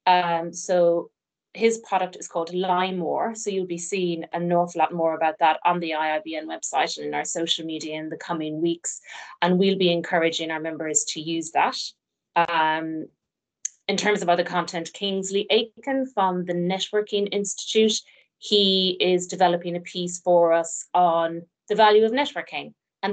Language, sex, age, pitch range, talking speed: English, female, 30-49, 170-200 Hz, 165 wpm